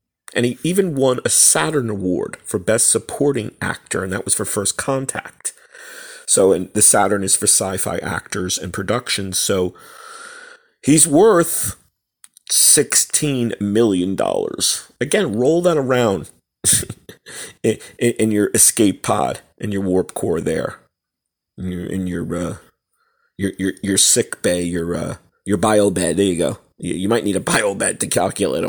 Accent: American